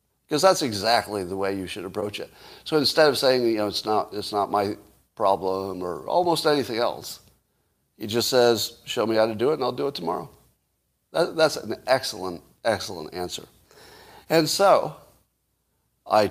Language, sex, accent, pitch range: English, male, American, 110-155 Hz